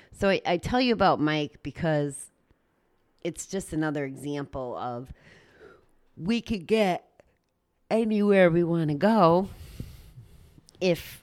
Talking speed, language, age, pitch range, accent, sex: 120 wpm, English, 30-49, 130-160 Hz, American, female